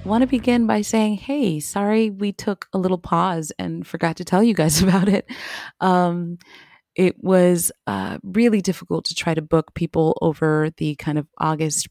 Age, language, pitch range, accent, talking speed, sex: 30-49, English, 155-190 Hz, American, 185 wpm, female